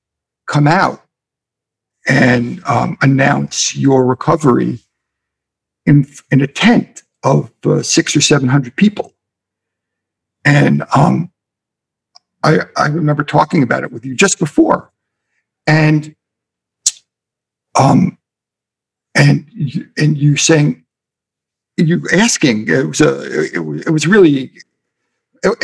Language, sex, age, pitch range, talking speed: English, male, 60-79, 135-175 Hz, 110 wpm